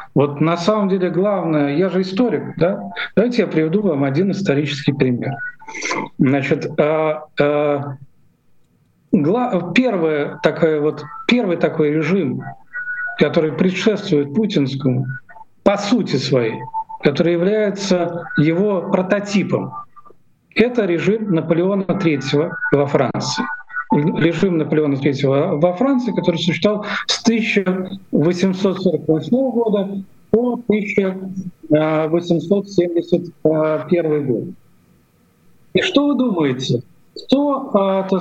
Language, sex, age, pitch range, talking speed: Russian, male, 50-69, 155-205 Hz, 95 wpm